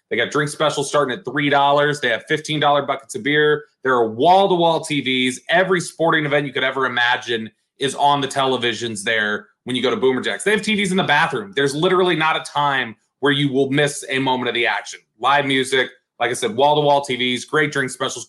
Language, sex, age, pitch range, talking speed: English, male, 30-49, 115-155 Hz, 215 wpm